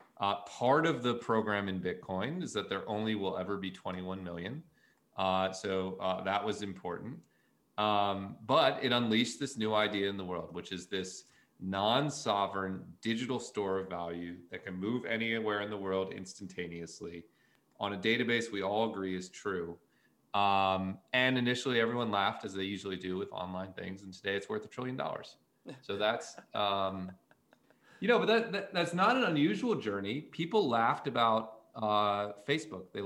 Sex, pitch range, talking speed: male, 95-120 Hz, 165 wpm